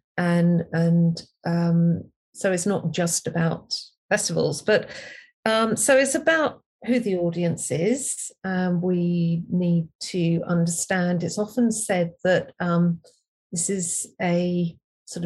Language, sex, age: English, female, 40-59